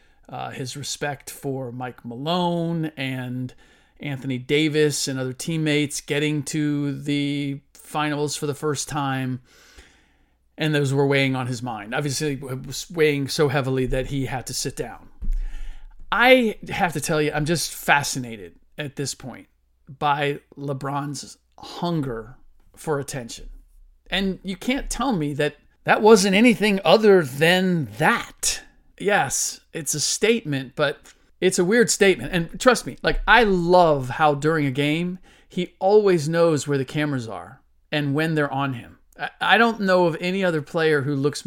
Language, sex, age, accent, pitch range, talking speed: English, male, 40-59, American, 140-190 Hz, 155 wpm